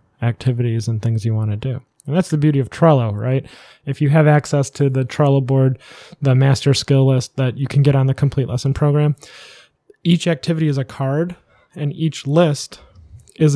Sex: male